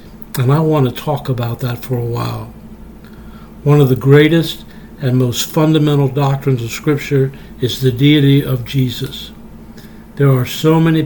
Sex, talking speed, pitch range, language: male, 155 wpm, 130-150 Hz, English